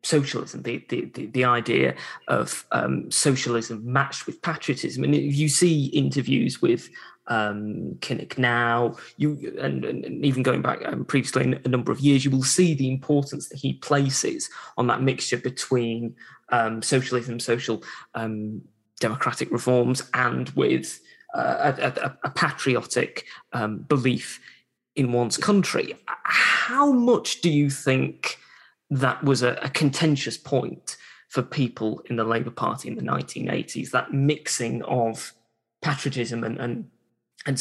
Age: 20-39